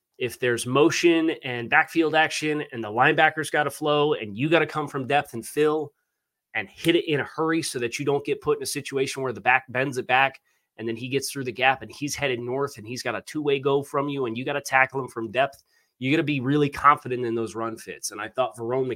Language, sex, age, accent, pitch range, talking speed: English, male, 30-49, American, 115-155 Hz, 265 wpm